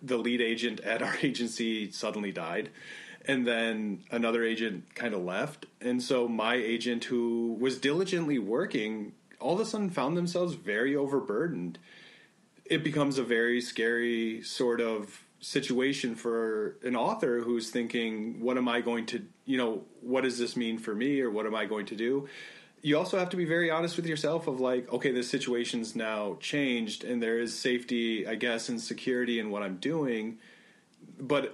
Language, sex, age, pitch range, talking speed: English, male, 30-49, 115-140 Hz, 175 wpm